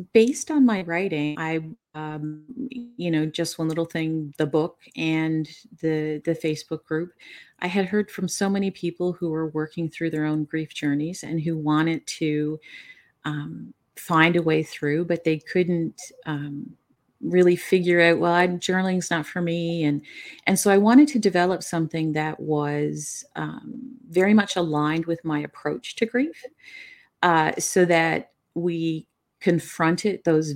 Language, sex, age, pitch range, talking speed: English, female, 40-59, 155-185 Hz, 160 wpm